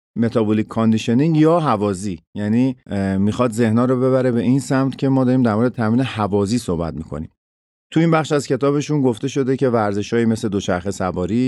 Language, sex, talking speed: Persian, male, 175 wpm